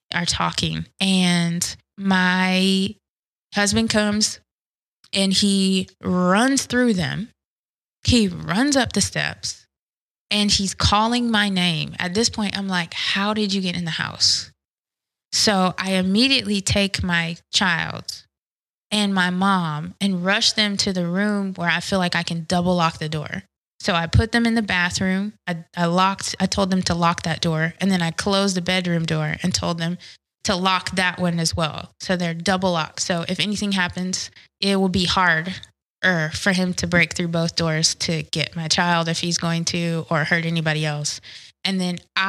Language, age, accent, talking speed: English, 20-39, American, 175 wpm